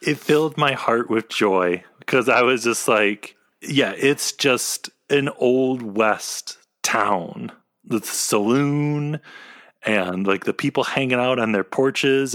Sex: male